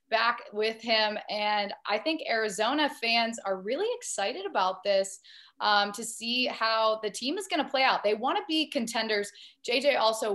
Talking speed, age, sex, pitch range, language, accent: 180 wpm, 20-39, female, 215-285 Hz, English, American